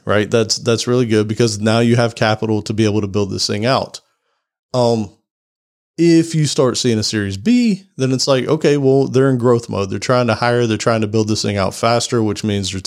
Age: 30-49